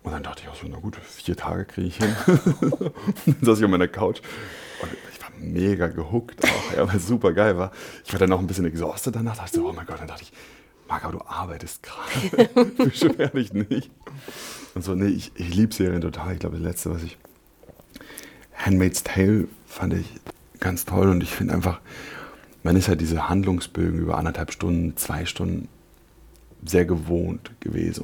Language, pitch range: German, 85-100 Hz